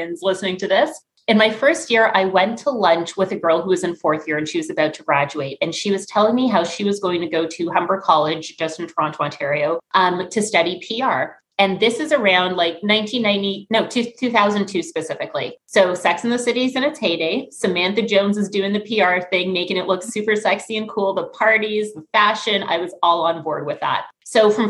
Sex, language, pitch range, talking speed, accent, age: female, English, 165-205 Hz, 225 wpm, American, 30-49